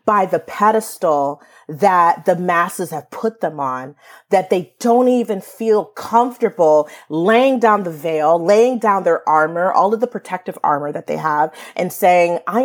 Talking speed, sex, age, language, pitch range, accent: 165 wpm, female, 30-49, English, 175-235 Hz, American